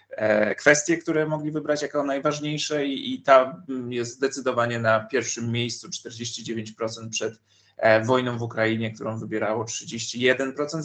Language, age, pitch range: Polish, 30-49, 110-140 Hz